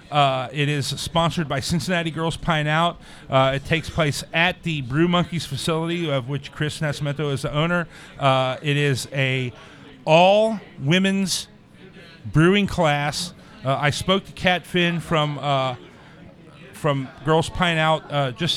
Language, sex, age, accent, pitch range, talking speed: English, male, 40-59, American, 140-170 Hz, 150 wpm